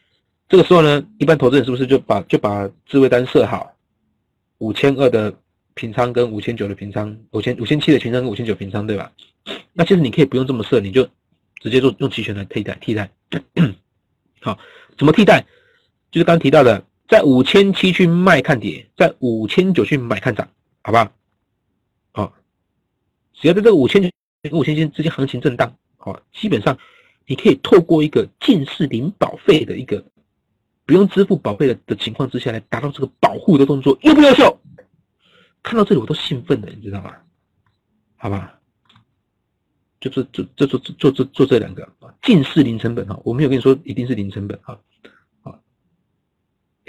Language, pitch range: Chinese, 105-155 Hz